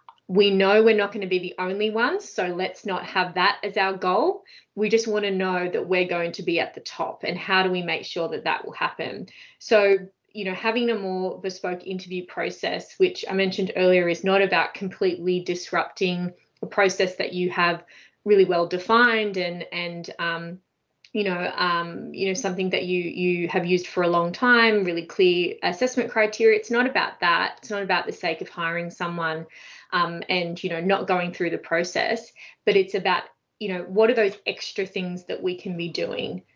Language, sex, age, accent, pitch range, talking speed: English, female, 20-39, Australian, 175-205 Hz, 205 wpm